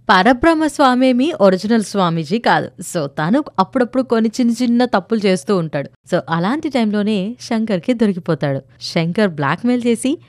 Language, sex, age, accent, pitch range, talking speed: Telugu, female, 20-39, native, 170-245 Hz, 130 wpm